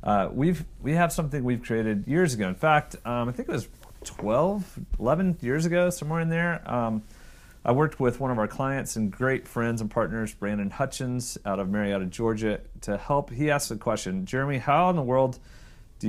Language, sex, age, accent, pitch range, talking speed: English, male, 30-49, American, 105-145 Hz, 200 wpm